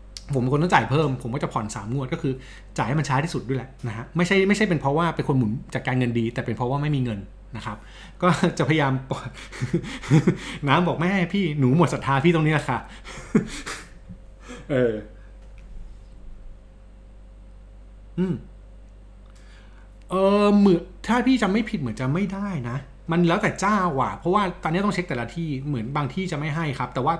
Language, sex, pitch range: Thai, male, 115-165 Hz